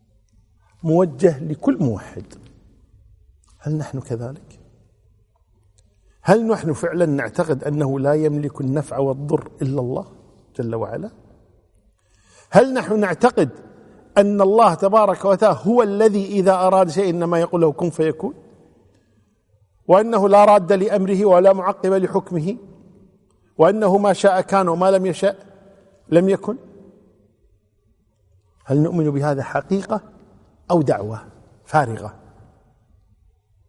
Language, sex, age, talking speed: Arabic, male, 50-69, 105 wpm